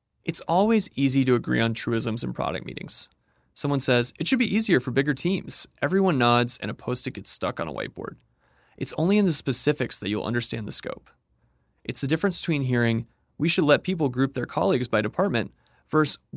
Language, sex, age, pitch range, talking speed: English, male, 30-49, 115-155 Hz, 200 wpm